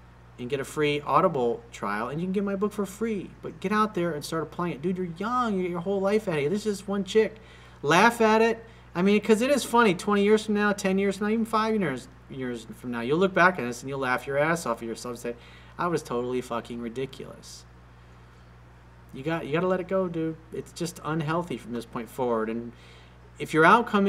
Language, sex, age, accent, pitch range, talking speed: English, male, 40-59, American, 120-180 Hz, 245 wpm